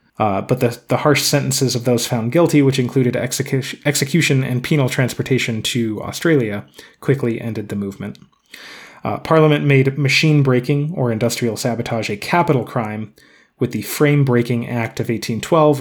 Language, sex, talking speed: English, male, 150 wpm